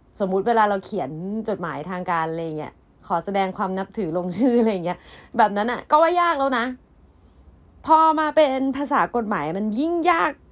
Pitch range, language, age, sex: 180-275 Hz, Thai, 20-39, female